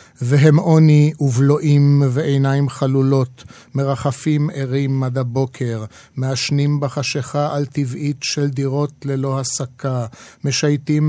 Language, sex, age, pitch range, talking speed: Hebrew, male, 50-69, 130-145 Hz, 95 wpm